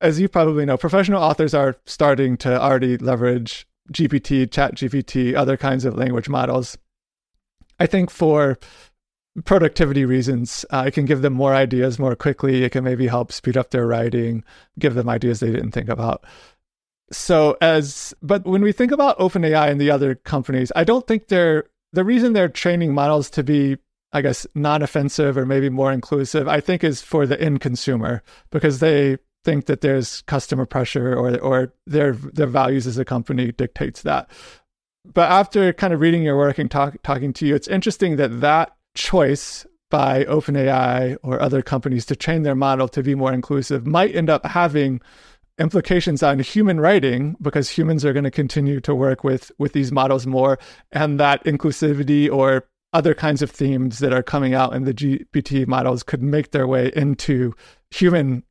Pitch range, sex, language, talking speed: 130-155 Hz, male, English, 180 wpm